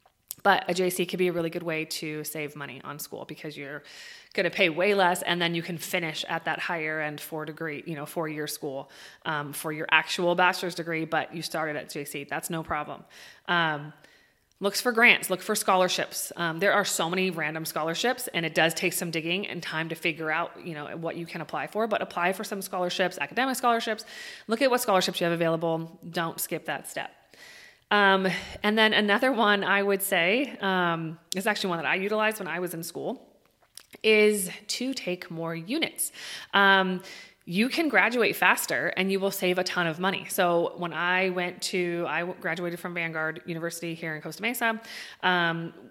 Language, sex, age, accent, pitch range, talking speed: English, female, 30-49, American, 160-190 Hz, 205 wpm